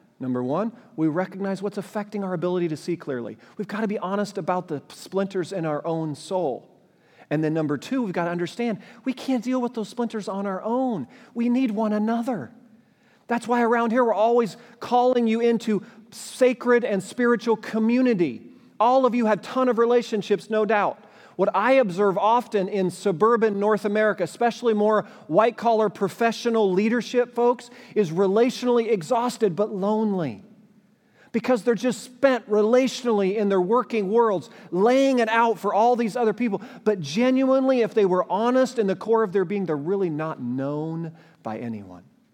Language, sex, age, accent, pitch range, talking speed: English, male, 40-59, American, 180-235 Hz, 170 wpm